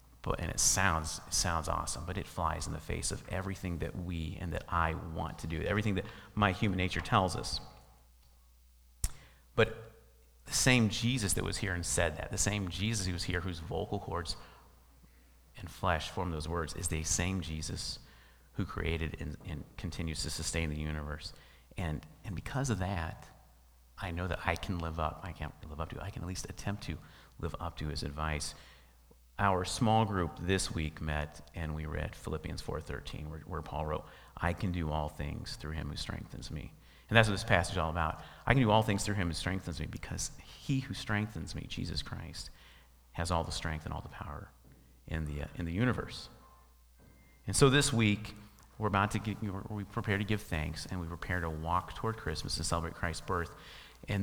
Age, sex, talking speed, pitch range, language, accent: 30-49, male, 205 wpm, 75-100 Hz, English, American